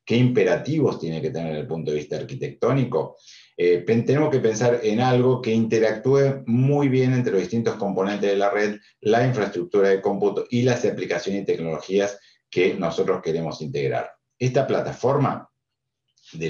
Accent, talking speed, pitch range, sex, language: Argentinian, 155 wpm, 85-120 Hz, male, Spanish